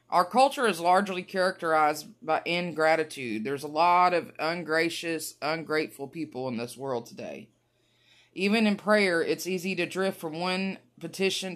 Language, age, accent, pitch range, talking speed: English, 30-49, American, 165-190 Hz, 145 wpm